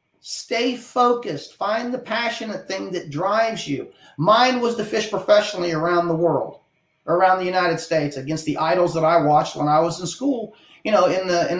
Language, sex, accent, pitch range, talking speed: English, male, American, 165-225 Hz, 180 wpm